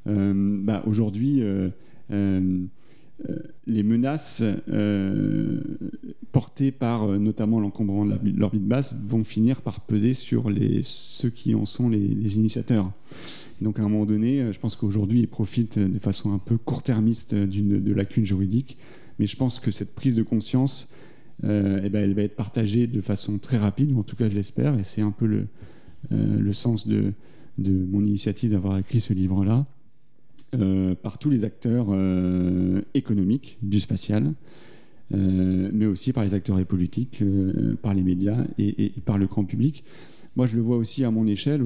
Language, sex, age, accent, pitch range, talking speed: French, male, 40-59, French, 100-120 Hz, 180 wpm